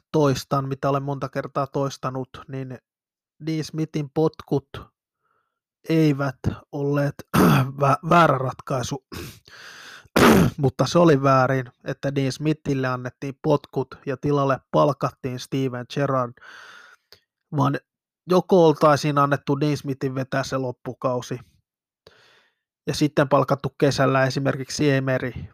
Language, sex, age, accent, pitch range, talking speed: Finnish, male, 20-39, native, 130-150 Hz, 100 wpm